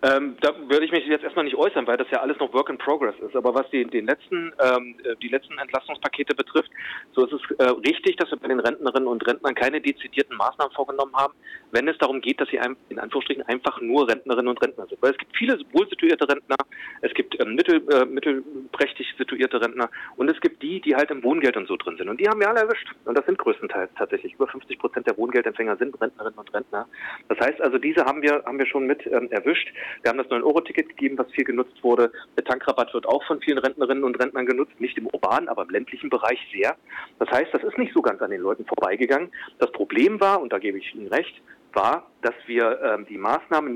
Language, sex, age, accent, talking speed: German, male, 40-59, German, 235 wpm